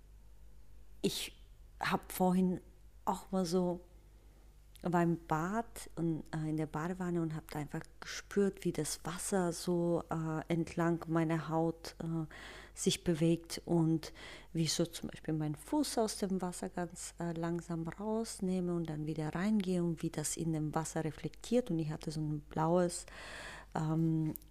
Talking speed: 145 wpm